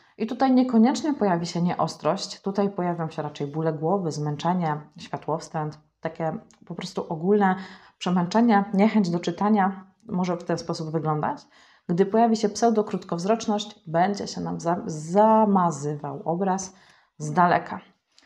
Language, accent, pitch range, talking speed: Polish, native, 170-210 Hz, 130 wpm